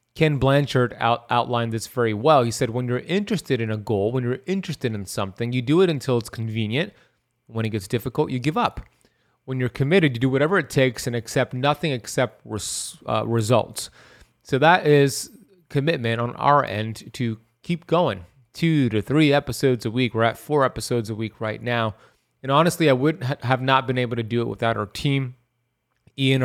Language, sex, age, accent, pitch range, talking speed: English, male, 30-49, American, 115-130 Hz, 195 wpm